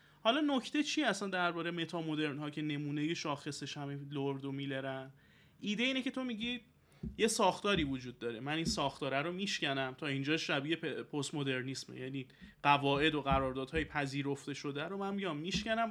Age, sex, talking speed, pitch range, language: 30-49, male, 165 wpm, 145-210 Hz, Persian